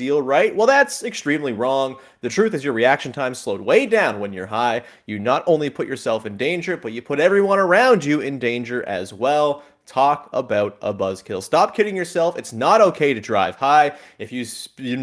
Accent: American